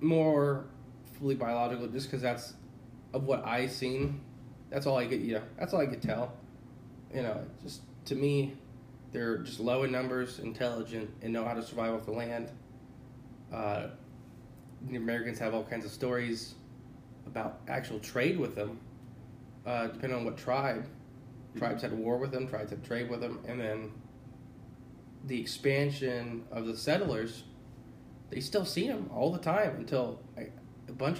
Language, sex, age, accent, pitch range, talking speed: English, male, 20-39, American, 115-130 Hz, 165 wpm